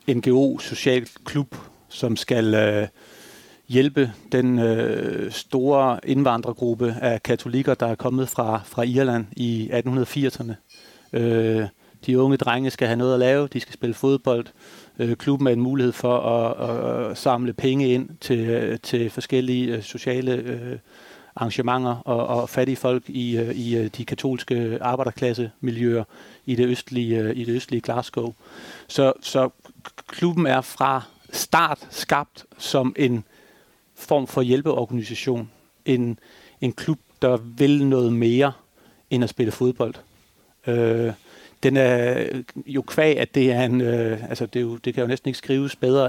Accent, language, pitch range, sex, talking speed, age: native, Danish, 115-130 Hz, male, 120 wpm, 40-59